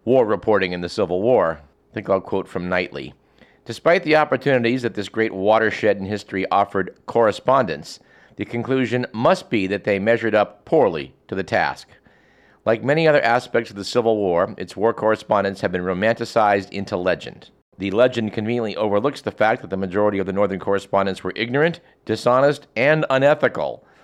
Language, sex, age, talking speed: English, male, 50-69, 170 wpm